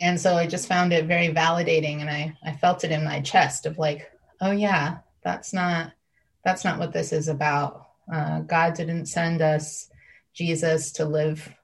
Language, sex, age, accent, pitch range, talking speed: English, female, 30-49, American, 155-170 Hz, 185 wpm